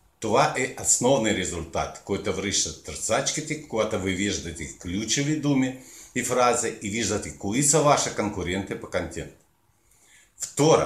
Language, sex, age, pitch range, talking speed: Bulgarian, male, 50-69, 100-135 Hz, 125 wpm